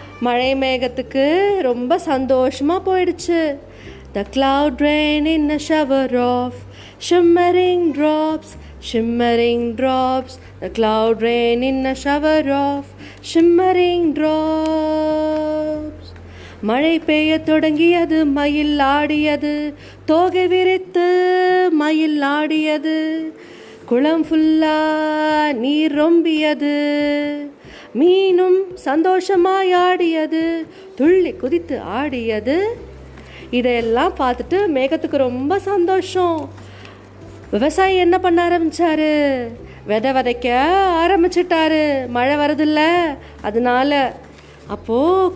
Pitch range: 260-330 Hz